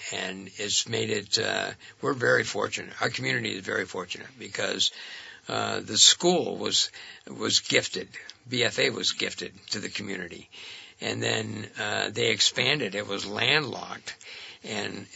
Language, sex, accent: English, male, American